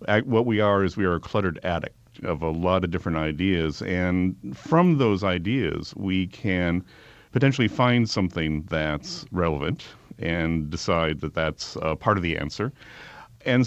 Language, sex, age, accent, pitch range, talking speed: English, male, 40-59, American, 85-110 Hz, 160 wpm